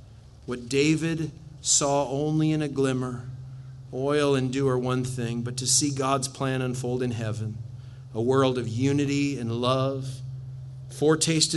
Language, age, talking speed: English, 40-59, 145 wpm